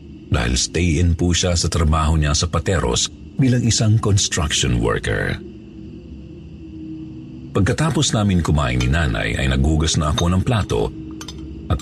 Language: Filipino